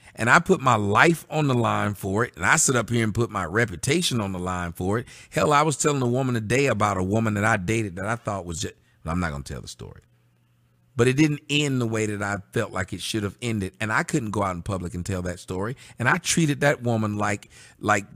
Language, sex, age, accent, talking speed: English, male, 40-59, American, 270 wpm